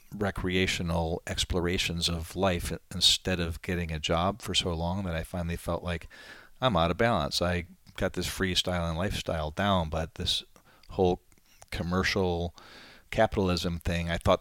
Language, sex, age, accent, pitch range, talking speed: English, male, 40-59, American, 80-95 Hz, 150 wpm